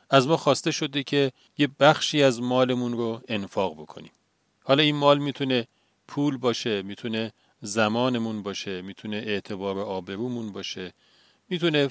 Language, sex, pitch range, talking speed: Persian, male, 105-140 Hz, 130 wpm